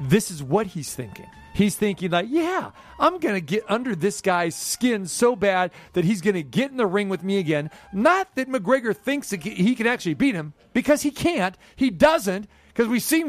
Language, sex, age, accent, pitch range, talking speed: English, male, 40-59, American, 185-245 Hz, 210 wpm